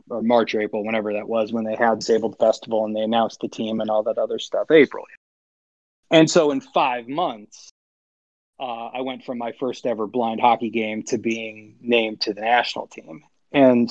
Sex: male